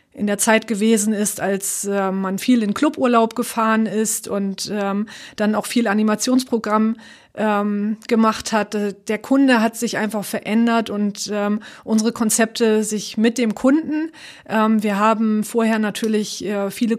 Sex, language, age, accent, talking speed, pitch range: female, German, 30-49, German, 150 wpm, 210-240 Hz